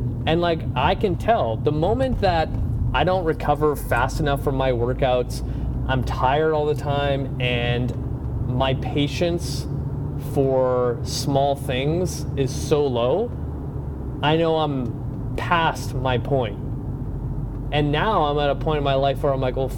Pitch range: 120-145 Hz